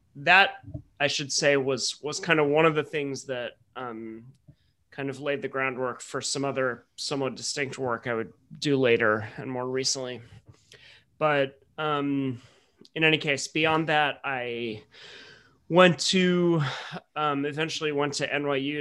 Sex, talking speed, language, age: male, 150 wpm, English, 30-49